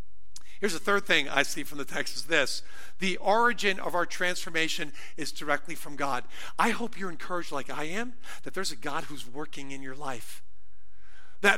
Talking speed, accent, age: 190 wpm, American, 50-69